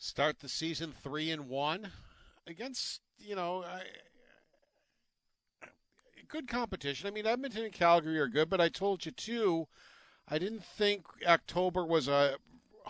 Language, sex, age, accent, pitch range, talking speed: English, male, 50-69, American, 120-160 Hz, 135 wpm